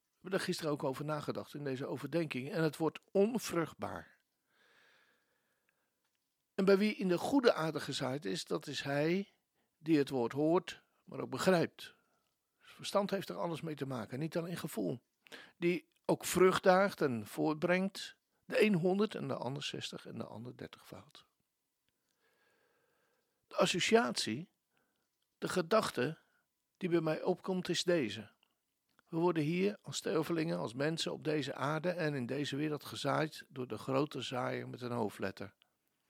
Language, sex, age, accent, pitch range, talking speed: Dutch, male, 60-79, Dutch, 145-185 Hz, 155 wpm